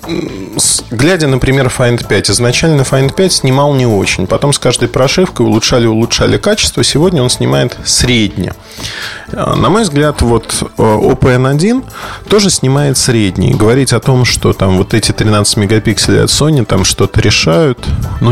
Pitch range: 100-125 Hz